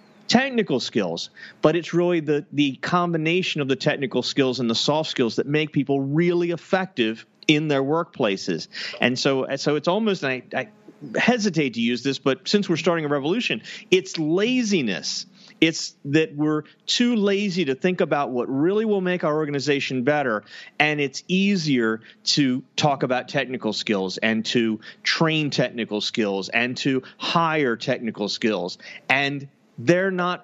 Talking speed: 160 wpm